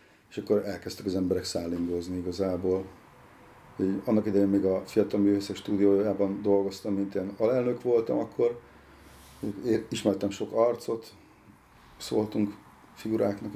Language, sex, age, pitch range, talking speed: Hungarian, male, 40-59, 95-115 Hz, 115 wpm